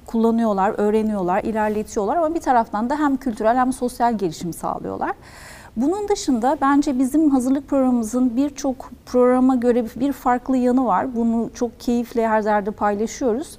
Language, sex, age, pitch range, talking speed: Turkish, female, 40-59, 220-270 Hz, 140 wpm